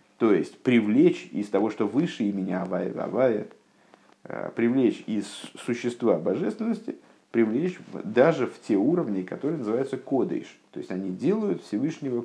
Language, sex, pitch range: Russian, male, 95-130 Hz